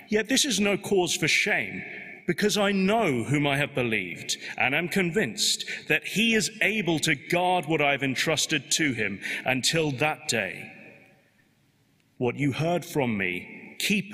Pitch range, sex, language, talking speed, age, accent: 125-170 Hz, male, English, 160 wpm, 30-49, British